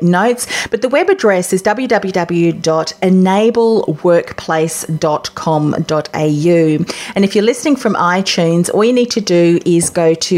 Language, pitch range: English, 170-220 Hz